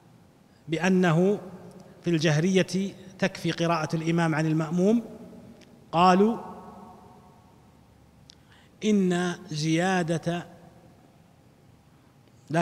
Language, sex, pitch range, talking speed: Arabic, male, 160-190 Hz, 55 wpm